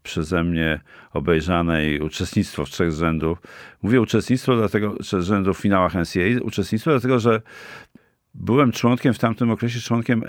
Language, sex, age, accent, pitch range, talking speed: Polish, male, 50-69, native, 85-115 Hz, 140 wpm